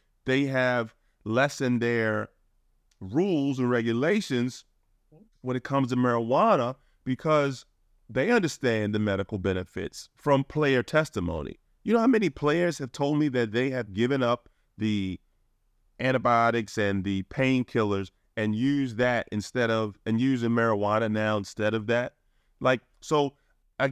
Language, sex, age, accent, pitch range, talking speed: English, male, 30-49, American, 105-125 Hz, 135 wpm